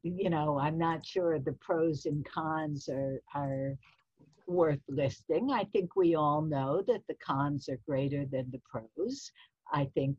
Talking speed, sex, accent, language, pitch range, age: 165 wpm, female, American, English, 135-170 Hz, 60-79